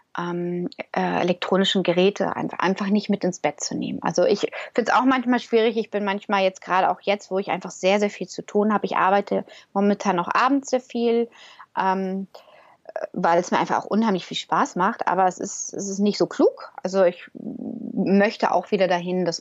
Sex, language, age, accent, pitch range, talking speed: female, German, 30-49, German, 185-230 Hz, 200 wpm